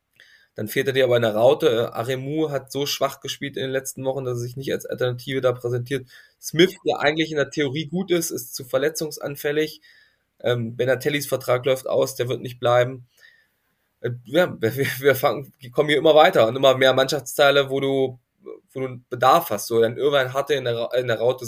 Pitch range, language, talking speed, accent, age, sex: 125-150 Hz, German, 200 wpm, German, 20-39, male